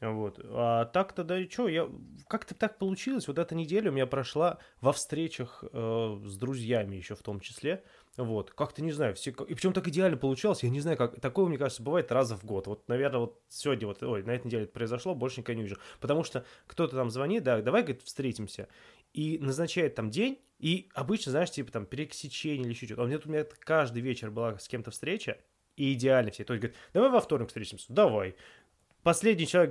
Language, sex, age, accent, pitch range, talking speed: Russian, male, 20-39, native, 115-155 Hz, 220 wpm